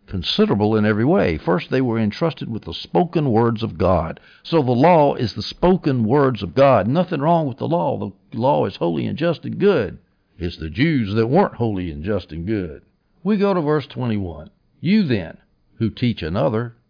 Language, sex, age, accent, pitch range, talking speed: English, male, 60-79, American, 100-145 Hz, 200 wpm